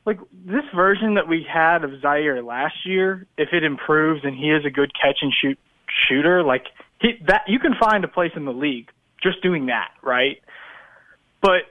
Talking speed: 190 wpm